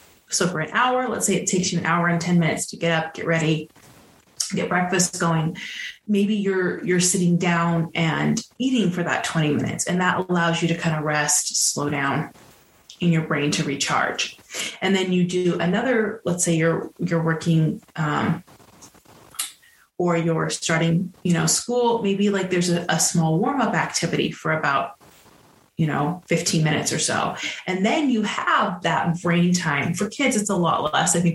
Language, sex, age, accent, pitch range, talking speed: English, female, 30-49, American, 165-200 Hz, 185 wpm